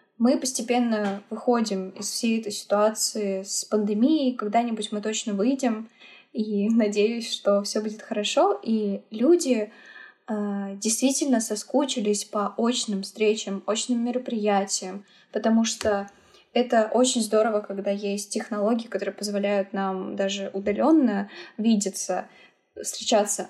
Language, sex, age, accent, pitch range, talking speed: Russian, female, 10-29, native, 200-230 Hz, 110 wpm